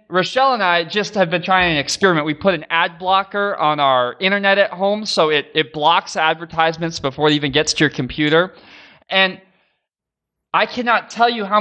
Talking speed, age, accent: 190 wpm, 20-39, American